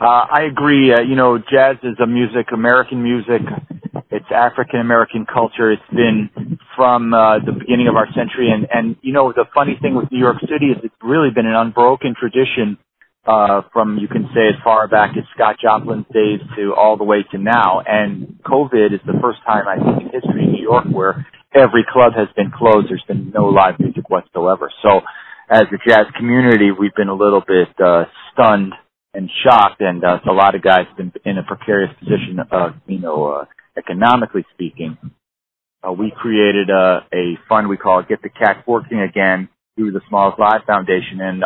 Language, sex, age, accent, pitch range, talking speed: English, male, 40-59, American, 105-120 Hz, 200 wpm